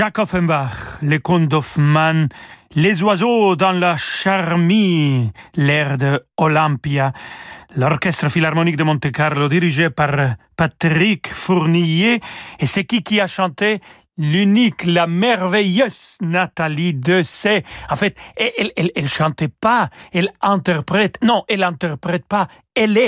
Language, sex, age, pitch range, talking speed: French, male, 40-59, 150-190 Hz, 125 wpm